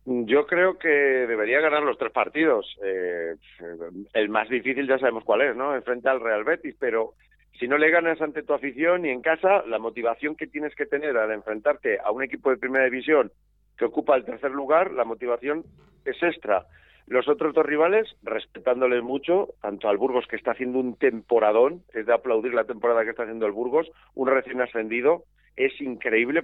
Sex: male